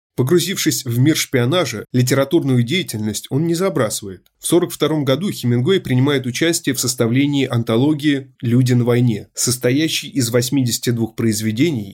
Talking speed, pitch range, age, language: 130 wpm, 115-145 Hz, 20-39, Russian